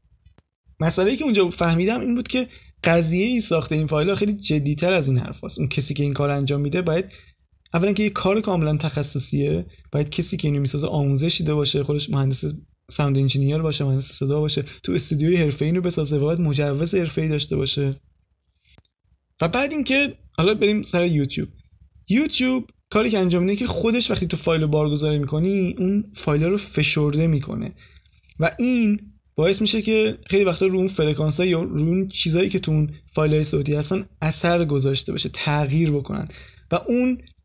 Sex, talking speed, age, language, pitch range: male, 170 wpm, 20-39, Persian, 145-185 Hz